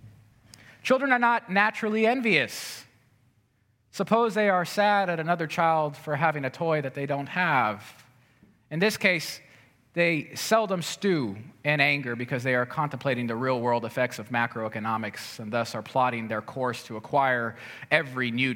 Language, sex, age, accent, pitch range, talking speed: English, male, 30-49, American, 115-160 Hz, 150 wpm